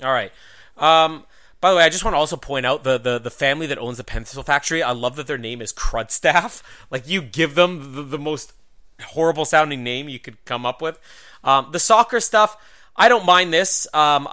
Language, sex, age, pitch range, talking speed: English, male, 30-49, 140-185 Hz, 220 wpm